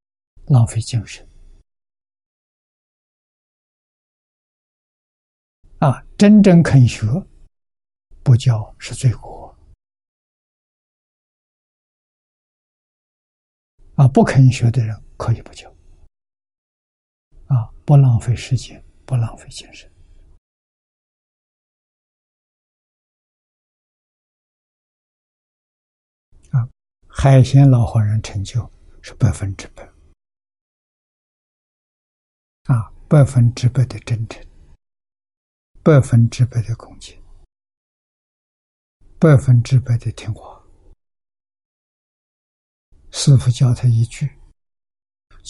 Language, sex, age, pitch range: Chinese, male, 60-79, 80-125 Hz